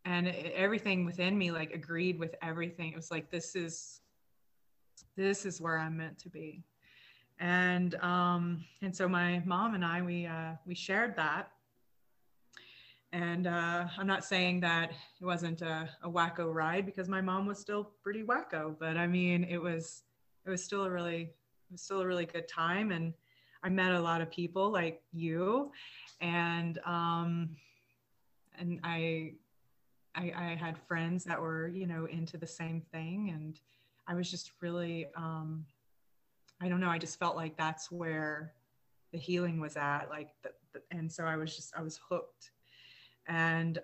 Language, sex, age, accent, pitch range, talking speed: English, female, 30-49, American, 160-175 Hz, 165 wpm